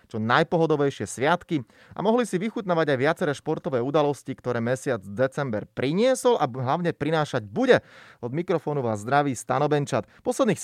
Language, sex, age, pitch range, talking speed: Slovak, male, 30-49, 125-165 Hz, 140 wpm